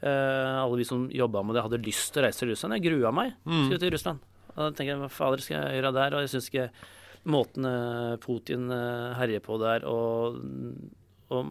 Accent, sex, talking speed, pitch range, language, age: Swedish, male, 205 wpm, 115-140 Hz, English, 30-49